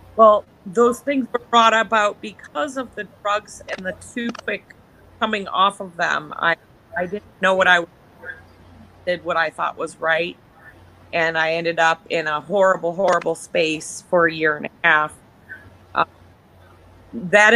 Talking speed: 170 wpm